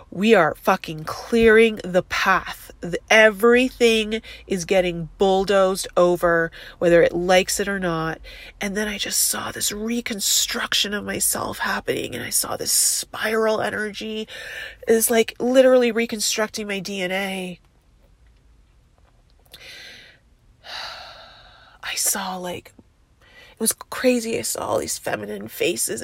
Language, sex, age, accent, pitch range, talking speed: English, female, 30-49, American, 195-240 Hz, 120 wpm